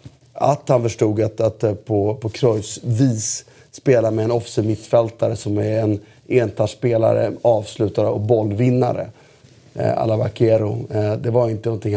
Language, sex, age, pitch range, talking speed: Swedish, male, 30-49, 110-125 Hz, 140 wpm